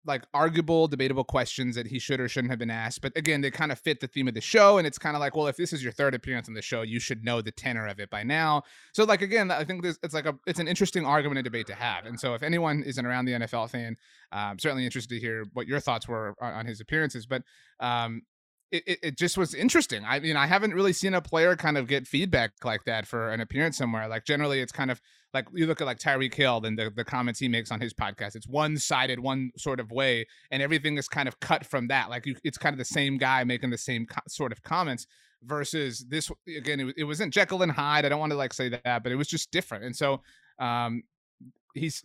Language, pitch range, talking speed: English, 120-150 Hz, 270 wpm